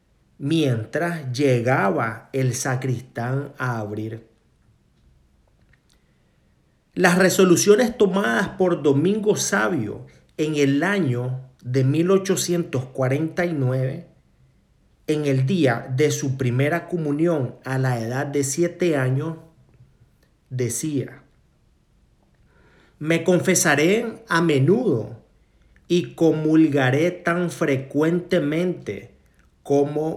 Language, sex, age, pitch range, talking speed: Spanish, male, 40-59, 130-175 Hz, 80 wpm